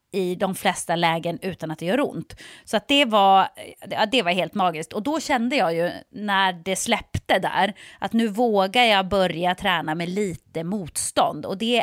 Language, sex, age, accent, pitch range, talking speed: English, female, 30-49, Swedish, 175-260 Hz, 190 wpm